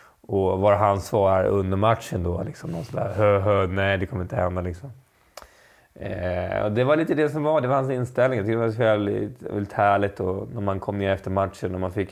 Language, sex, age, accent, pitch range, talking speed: Swedish, male, 30-49, native, 95-115 Hz, 230 wpm